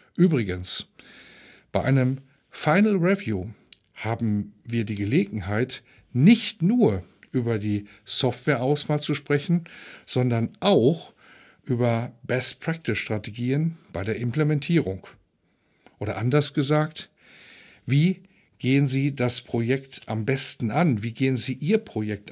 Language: German